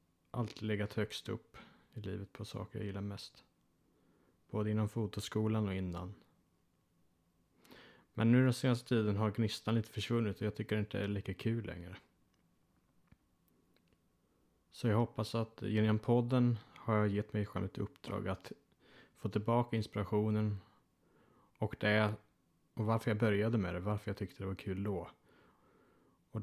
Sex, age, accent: male, 30-49, Norwegian